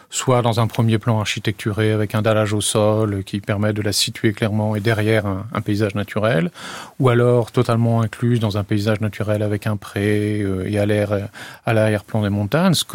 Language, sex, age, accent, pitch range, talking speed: French, male, 40-59, French, 105-125 Hz, 190 wpm